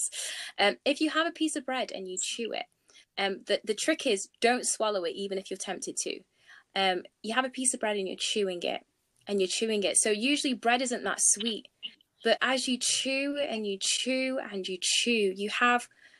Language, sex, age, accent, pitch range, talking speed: English, female, 20-39, British, 185-220 Hz, 215 wpm